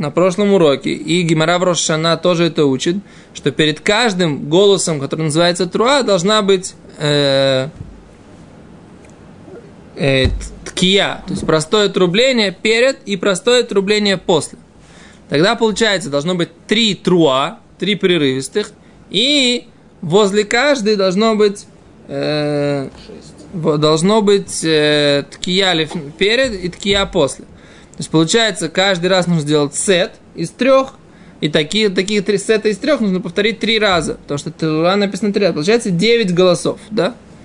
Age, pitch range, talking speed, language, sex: 20-39, 160-215 Hz, 120 wpm, Russian, male